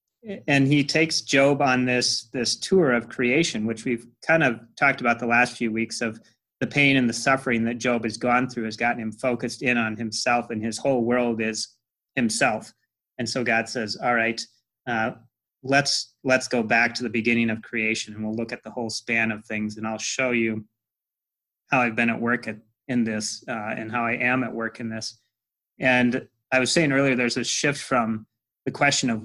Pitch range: 115-130 Hz